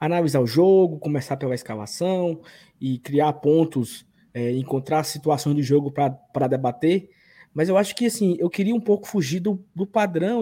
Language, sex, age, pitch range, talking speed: Portuguese, male, 20-39, 150-205 Hz, 160 wpm